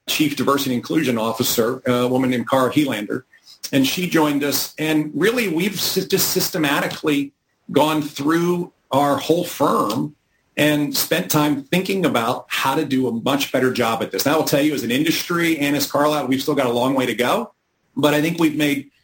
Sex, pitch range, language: male, 135-165 Hz, English